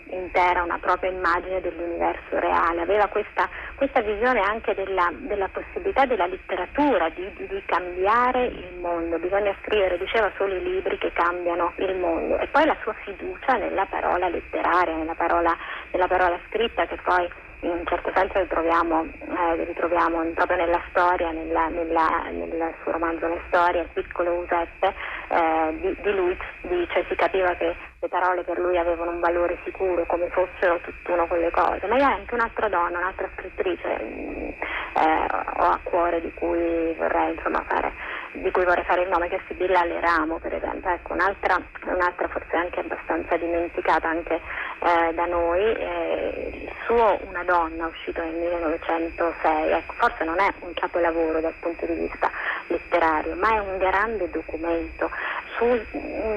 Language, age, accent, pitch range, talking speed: Italian, 30-49, native, 170-195 Hz, 165 wpm